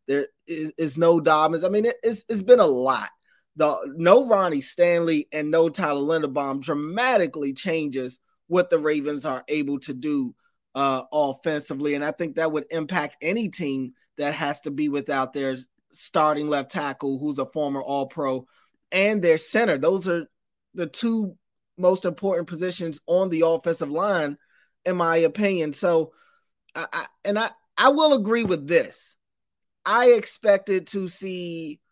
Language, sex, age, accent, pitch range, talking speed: English, male, 20-39, American, 155-200 Hz, 155 wpm